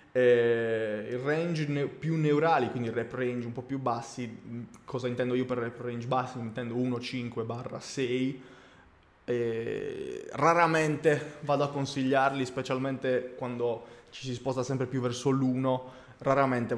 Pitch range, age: 120-145 Hz, 20-39